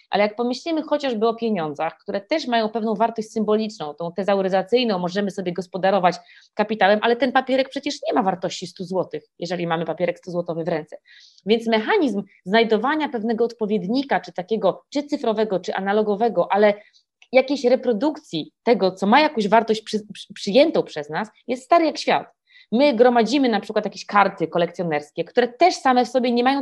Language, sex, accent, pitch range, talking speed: Polish, female, native, 180-245 Hz, 165 wpm